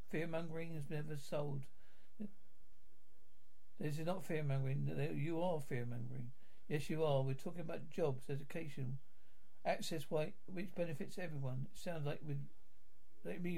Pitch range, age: 145-185 Hz, 60-79